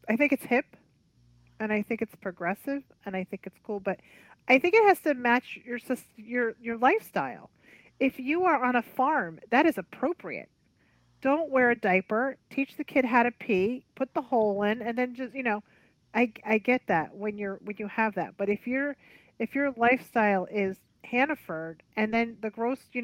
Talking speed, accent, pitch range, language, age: 200 wpm, American, 195-250 Hz, English, 30-49